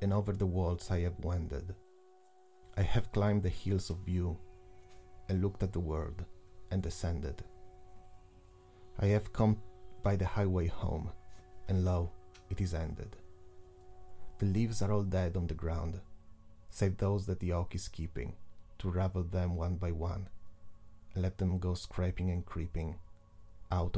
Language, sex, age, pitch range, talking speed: Italian, male, 30-49, 90-100 Hz, 155 wpm